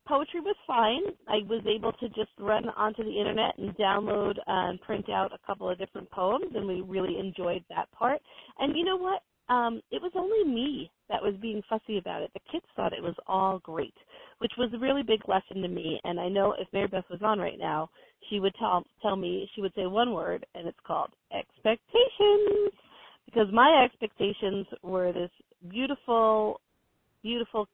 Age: 40-59